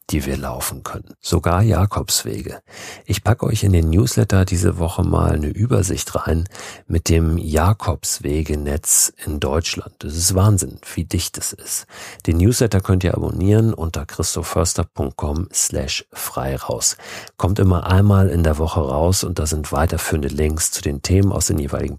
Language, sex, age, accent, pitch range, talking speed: German, male, 50-69, German, 75-100 Hz, 155 wpm